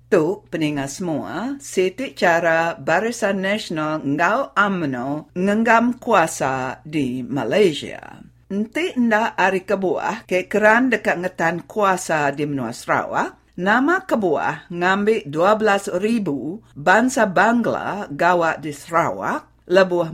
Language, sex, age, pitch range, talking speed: English, female, 50-69, 160-220 Hz, 105 wpm